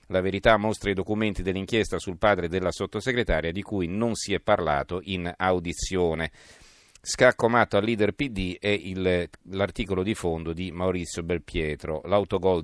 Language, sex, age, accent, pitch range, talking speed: Italian, male, 40-59, native, 90-110 Hz, 140 wpm